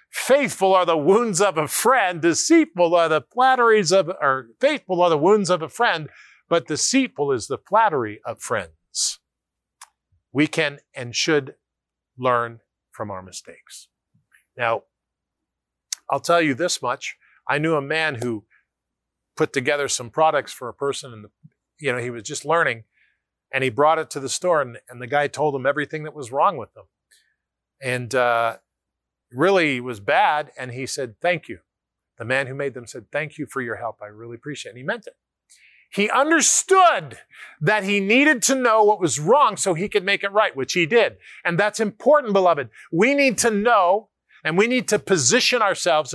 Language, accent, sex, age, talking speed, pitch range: English, American, male, 50-69, 180 wpm, 125-205 Hz